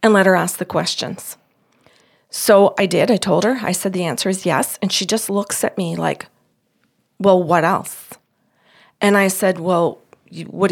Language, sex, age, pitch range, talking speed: English, female, 40-59, 180-215 Hz, 185 wpm